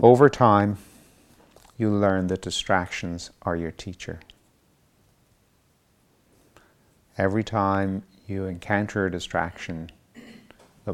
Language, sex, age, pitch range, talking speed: English, male, 50-69, 85-100 Hz, 90 wpm